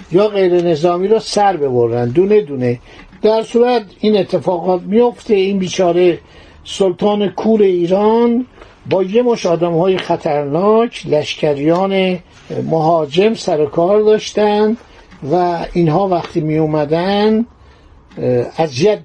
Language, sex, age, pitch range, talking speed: Persian, male, 60-79, 160-205 Hz, 105 wpm